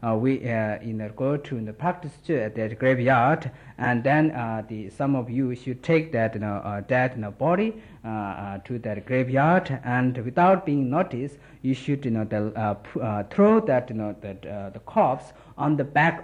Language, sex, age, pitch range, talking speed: Italian, male, 50-69, 110-145 Hz, 155 wpm